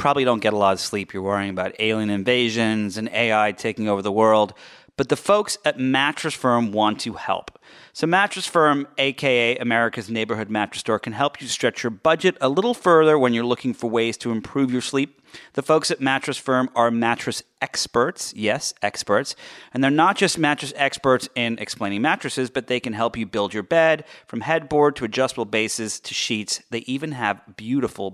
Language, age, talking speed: English, 30-49, 195 wpm